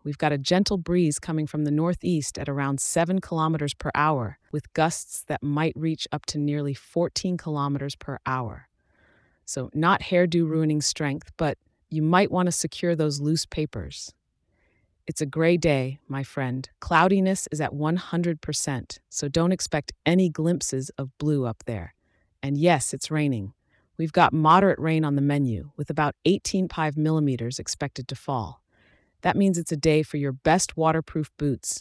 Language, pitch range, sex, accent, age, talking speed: English, 135-165 Hz, female, American, 30-49, 165 wpm